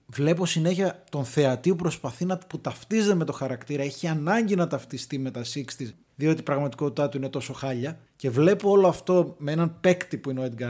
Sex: male